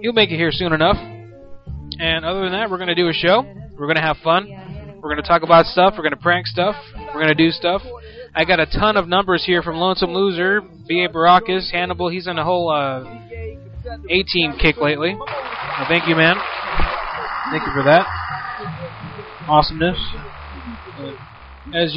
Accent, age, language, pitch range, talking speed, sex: American, 20-39, English, 150-185 Hz, 190 wpm, male